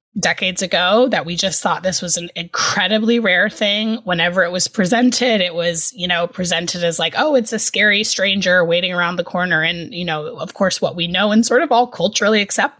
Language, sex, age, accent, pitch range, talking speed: English, female, 20-39, American, 170-220 Hz, 215 wpm